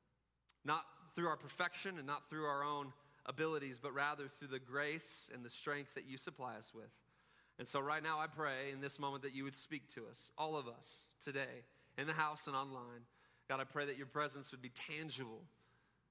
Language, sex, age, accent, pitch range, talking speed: English, male, 30-49, American, 135-185 Hz, 210 wpm